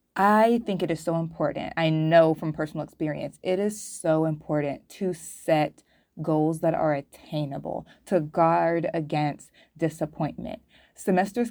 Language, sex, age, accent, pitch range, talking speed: English, female, 20-39, American, 155-175 Hz, 135 wpm